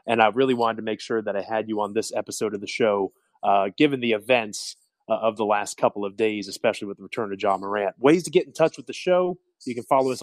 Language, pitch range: English, 110-135 Hz